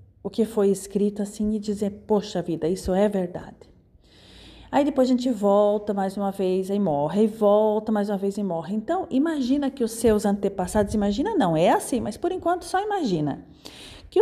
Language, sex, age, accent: Portuguese, female, 40-59, Brazilian